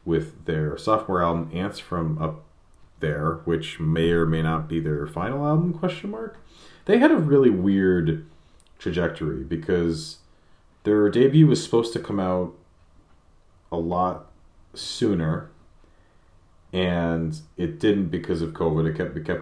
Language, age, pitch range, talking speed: English, 30-49, 80-95 Hz, 140 wpm